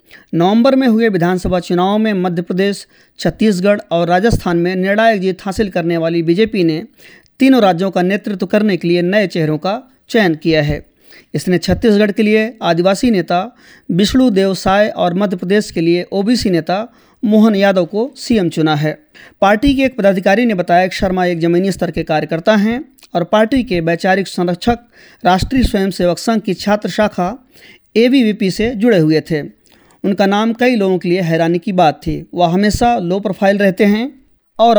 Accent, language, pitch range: Indian, English, 180-220 Hz